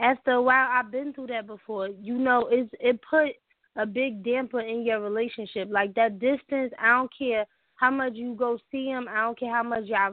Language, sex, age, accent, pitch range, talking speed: English, female, 20-39, American, 220-265 Hz, 220 wpm